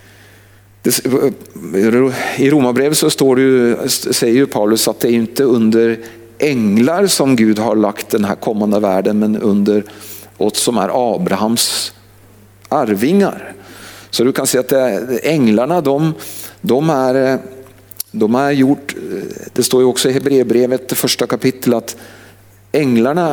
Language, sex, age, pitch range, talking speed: Swedish, male, 50-69, 105-130 Hz, 135 wpm